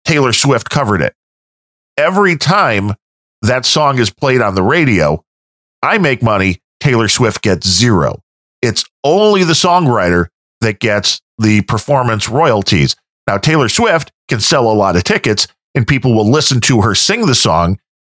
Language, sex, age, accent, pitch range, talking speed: English, male, 40-59, American, 100-135 Hz, 155 wpm